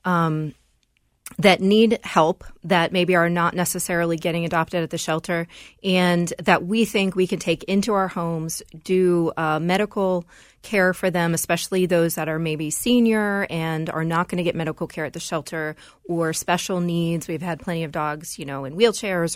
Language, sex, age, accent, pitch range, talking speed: English, female, 30-49, American, 160-185 Hz, 185 wpm